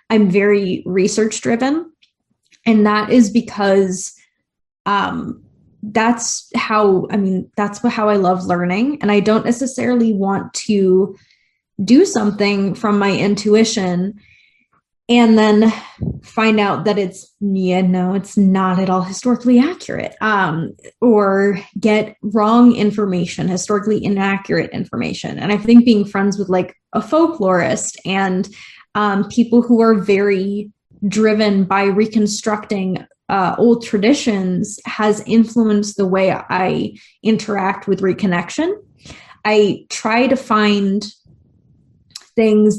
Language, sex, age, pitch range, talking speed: English, female, 20-39, 195-225 Hz, 120 wpm